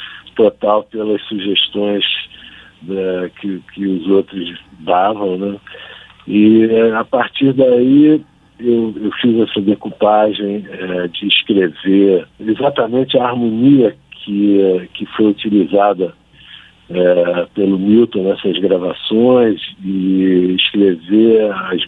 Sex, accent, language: male, Brazilian, Portuguese